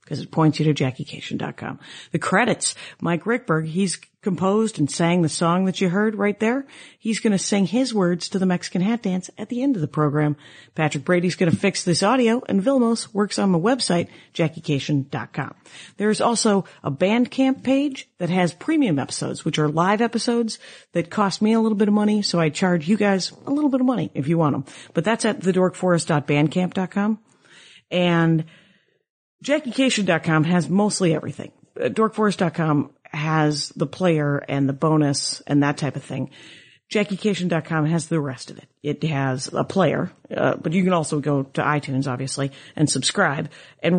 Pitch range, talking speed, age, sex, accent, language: 150-205 Hz, 180 wpm, 50-69, female, American, English